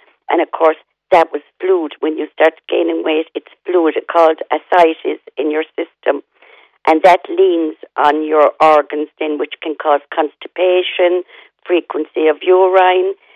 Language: English